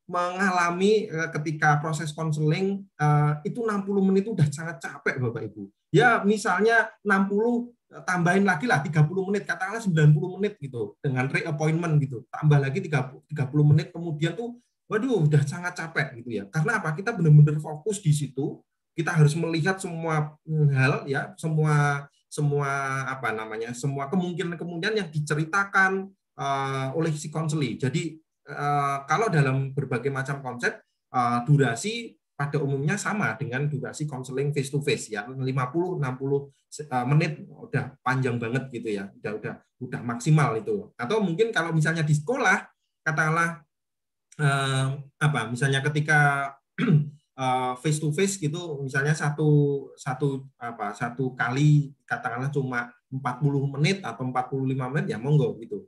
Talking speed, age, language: 135 wpm, 20-39, Indonesian